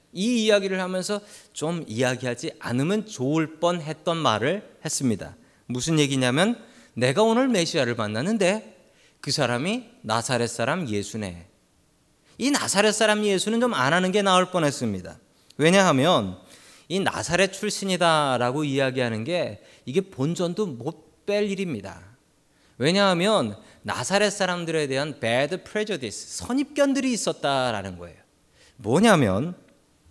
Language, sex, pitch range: Korean, male, 125-200 Hz